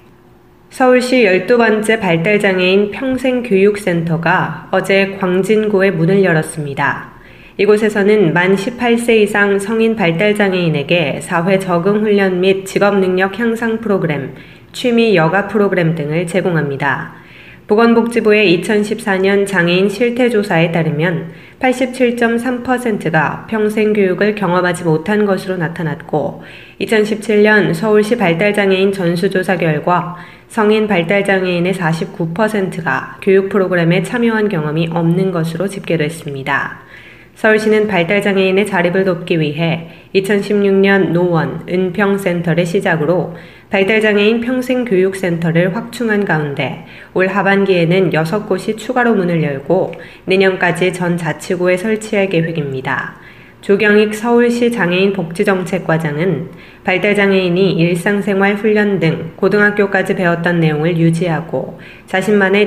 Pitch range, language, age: 170-210 Hz, Korean, 20-39